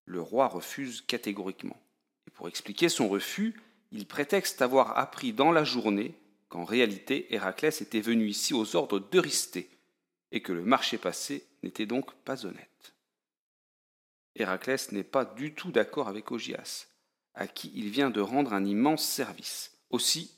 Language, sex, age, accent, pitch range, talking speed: French, male, 40-59, French, 100-140 Hz, 155 wpm